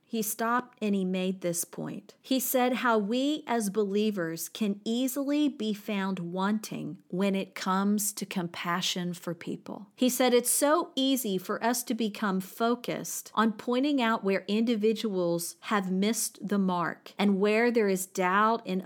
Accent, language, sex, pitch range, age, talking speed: American, English, female, 185-225 Hz, 40-59, 160 wpm